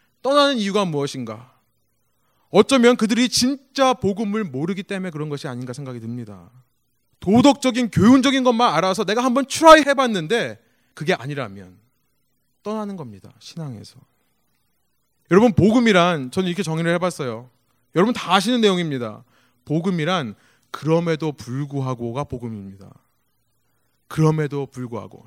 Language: Korean